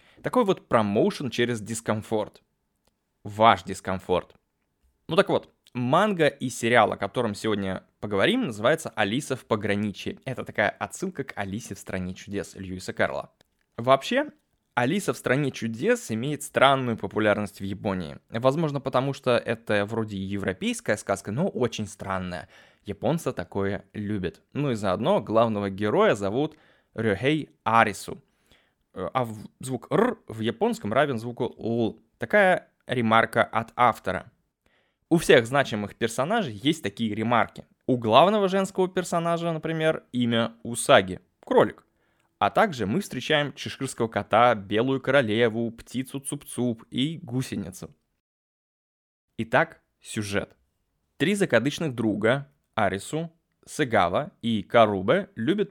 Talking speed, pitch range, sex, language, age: 120 wpm, 105-140 Hz, male, Russian, 20-39